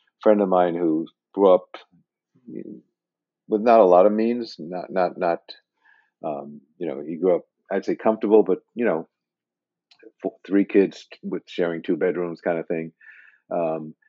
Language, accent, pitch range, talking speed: English, American, 85-100 Hz, 170 wpm